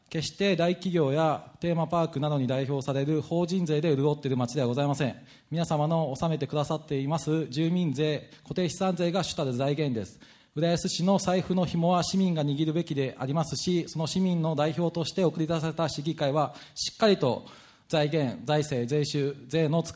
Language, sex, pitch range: Japanese, male, 145-175 Hz